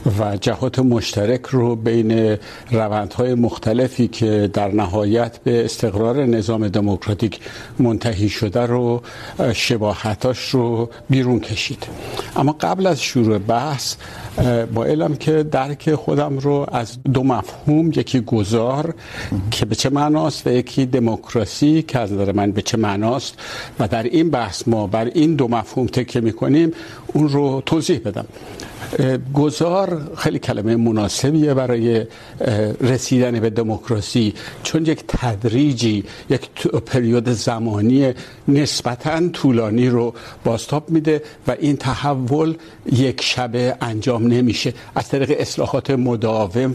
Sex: male